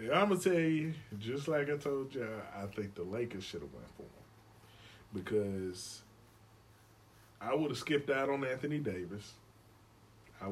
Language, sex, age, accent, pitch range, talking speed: English, male, 20-39, American, 105-140 Hz, 165 wpm